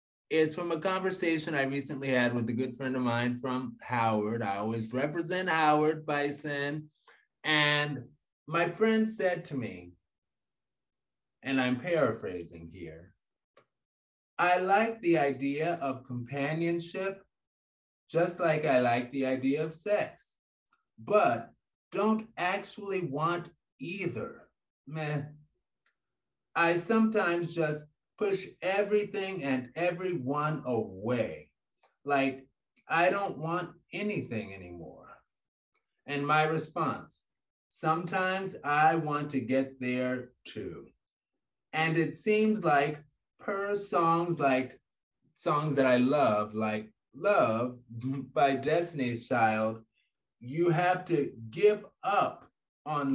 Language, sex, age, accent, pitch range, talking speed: English, male, 30-49, American, 125-170 Hz, 110 wpm